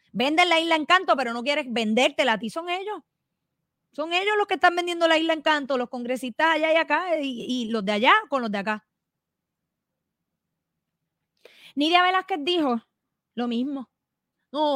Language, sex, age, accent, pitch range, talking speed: Spanish, female, 30-49, American, 210-300 Hz, 165 wpm